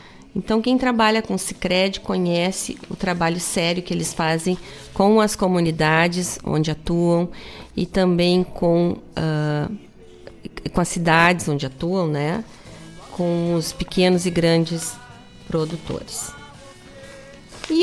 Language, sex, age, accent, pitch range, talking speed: Portuguese, female, 40-59, Brazilian, 170-215 Hz, 115 wpm